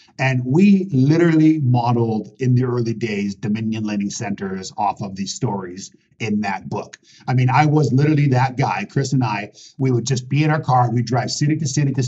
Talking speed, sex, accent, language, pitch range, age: 205 wpm, male, American, English, 110-135 Hz, 50-69